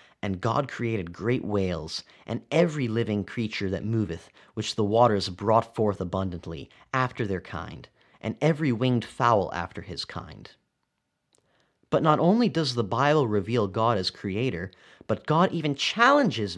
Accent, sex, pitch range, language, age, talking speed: American, male, 95-140 Hz, English, 30-49, 150 wpm